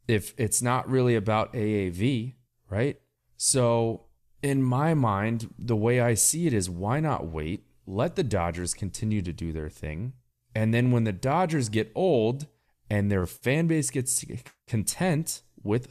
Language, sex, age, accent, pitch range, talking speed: English, male, 30-49, American, 95-125 Hz, 160 wpm